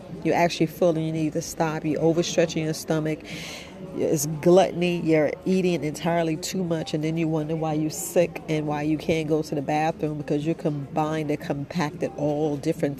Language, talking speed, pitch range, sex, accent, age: English, 190 wpm, 155-175 Hz, female, American, 40-59